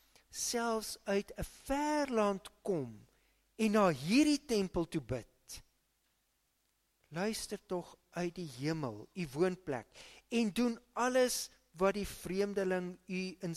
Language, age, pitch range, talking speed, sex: English, 50-69, 135-200 Hz, 115 wpm, male